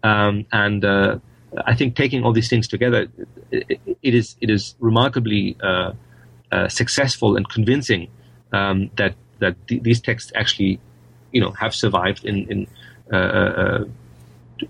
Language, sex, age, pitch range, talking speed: English, male, 40-59, 95-120 Hz, 145 wpm